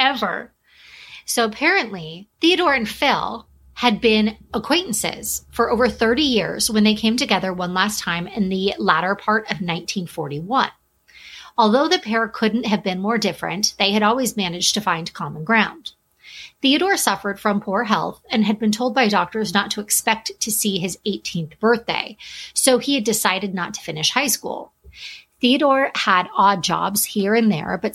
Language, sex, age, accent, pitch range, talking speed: English, female, 30-49, American, 190-235 Hz, 165 wpm